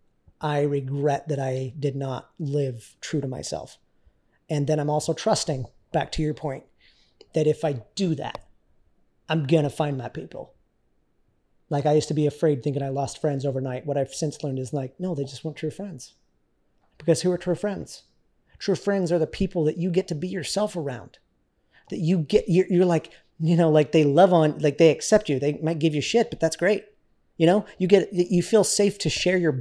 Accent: American